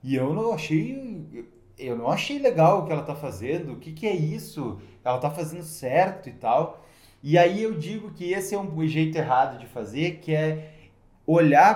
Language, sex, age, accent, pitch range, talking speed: Portuguese, male, 20-39, Brazilian, 135-185 Hz, 200 wpm